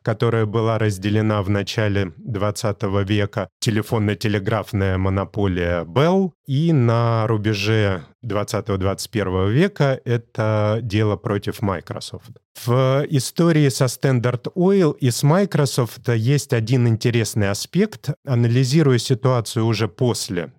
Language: Russian